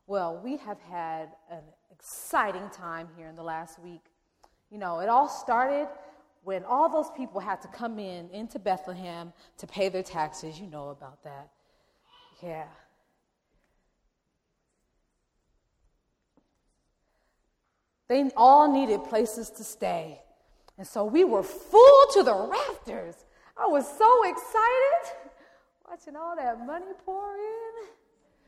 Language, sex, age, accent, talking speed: English, female, 30-49, American, 125 wpm